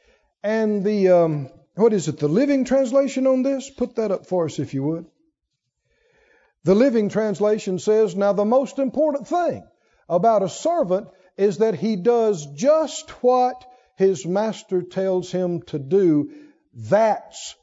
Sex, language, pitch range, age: male, English, 170-230 Hz, 50-69